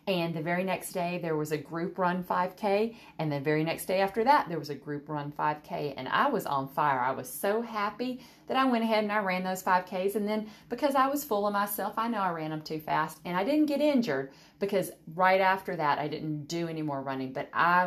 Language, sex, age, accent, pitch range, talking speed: English, female, 40-59, American, 150-200 Hz, 250 wpm